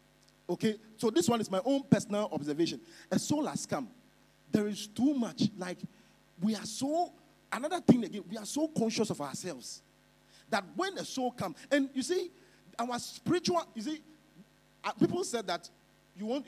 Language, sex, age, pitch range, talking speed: English, male, 40-59, 190-260 Hz, 170 wpm